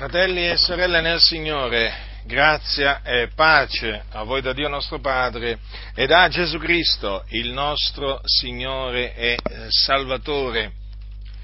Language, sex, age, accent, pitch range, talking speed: Italian, male, 40-59, native, 105-150 Hz, 120 wpm